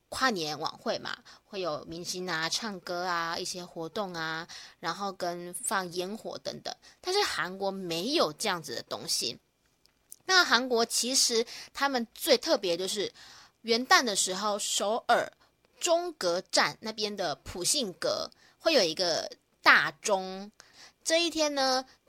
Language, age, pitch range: Chinese, 20-39, 185-250 Hz